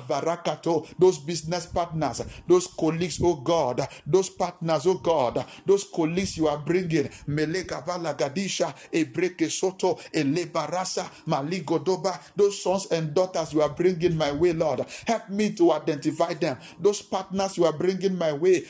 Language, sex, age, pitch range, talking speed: English, male, 50-69, 165-195 Hz, 120 wpm